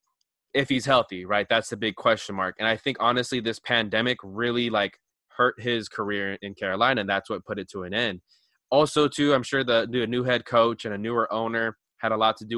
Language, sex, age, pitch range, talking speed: English, male, 20-39, 110-125 Hz, 225 wpm